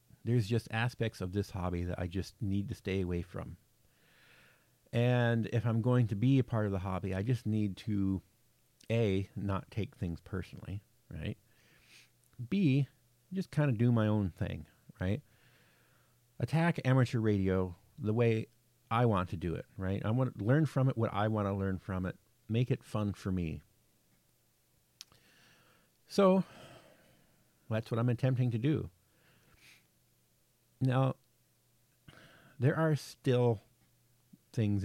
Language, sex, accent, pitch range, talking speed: English, male, American, 95-120 Hz, 145 wpm